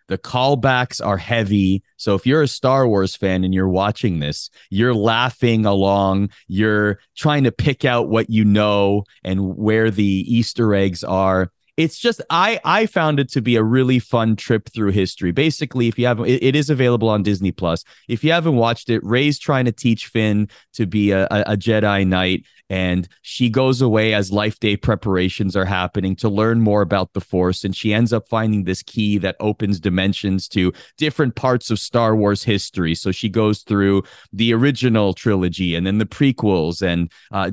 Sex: male